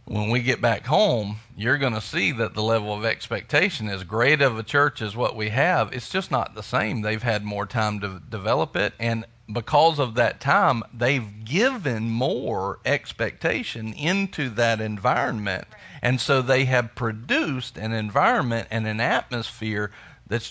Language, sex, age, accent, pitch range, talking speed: English, male, 40-59, American, 105-130 Hz, 170 wpm